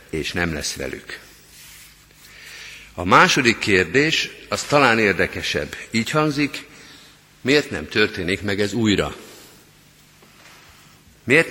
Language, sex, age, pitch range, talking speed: Hungarian, male, 50-69, 95-135 Hz, 100 wpm